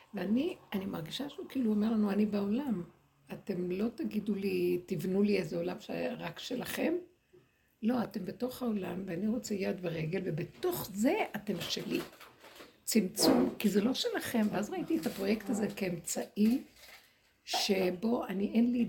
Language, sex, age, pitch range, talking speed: Hebrew, female, 60-79, 190-250 Hz, 145 wpm